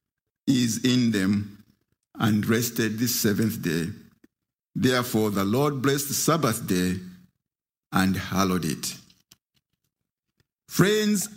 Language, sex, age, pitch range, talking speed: English, male, 50-69, 110-170 Hz, 100 wpm